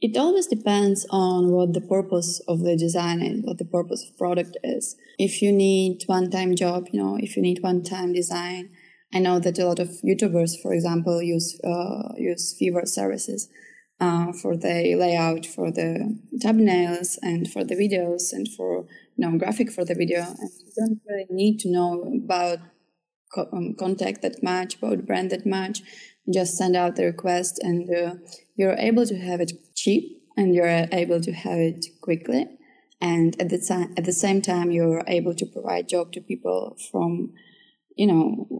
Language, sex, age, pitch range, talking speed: English, female, 20-39, 170-190 Hz, 185 wpm